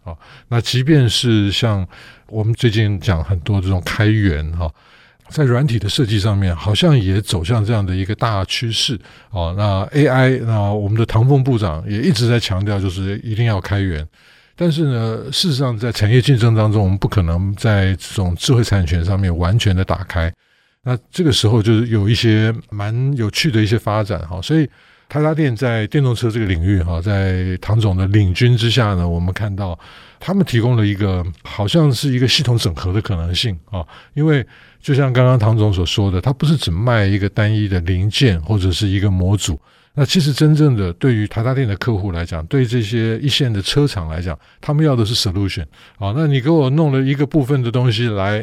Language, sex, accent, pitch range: Chinese, male, American, 95-125 Hz